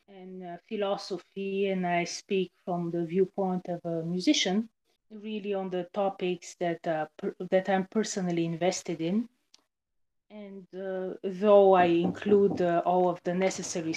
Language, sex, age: English, female, 30-49